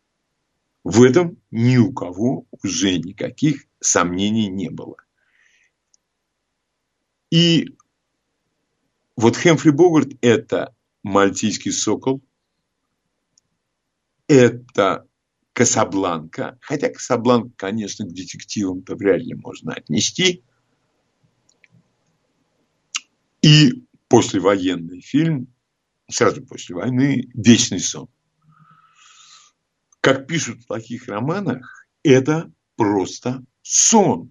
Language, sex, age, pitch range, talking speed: Russian, male, 50-69, 115-155 Hz, 75 wpm